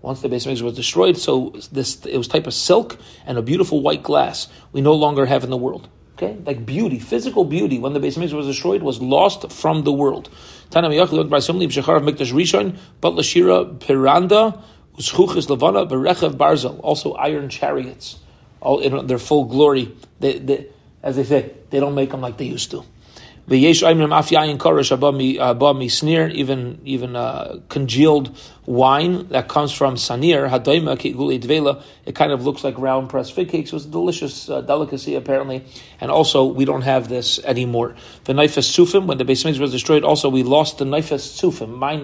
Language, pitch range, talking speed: English, 130-155 Hz, 170 wpm